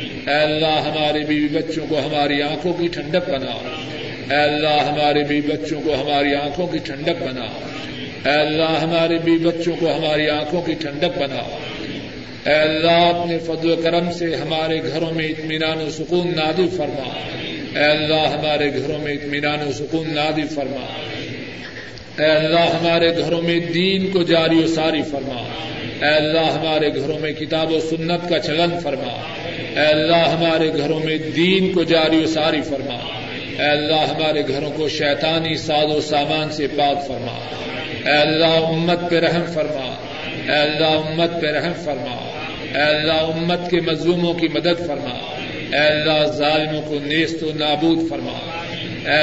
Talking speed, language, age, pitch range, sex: 160 wpm, Urdu, 50-69, 150-165 Hz, male